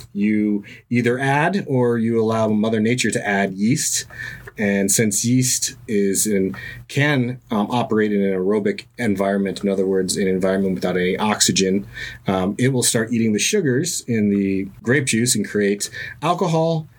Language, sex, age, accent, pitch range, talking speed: English, male, 30-49, American, 100-125 Hz, 160 wpm